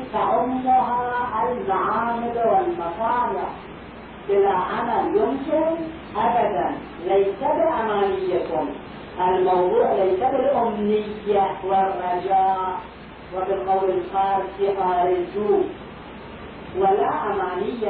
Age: 40-59